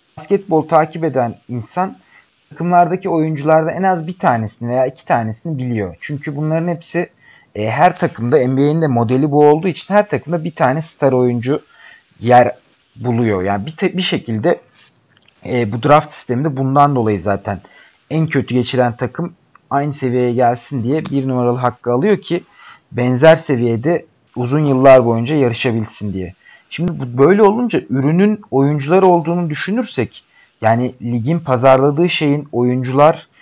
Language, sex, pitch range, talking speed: Turkish, male, 125-170 Hz, 135 wpm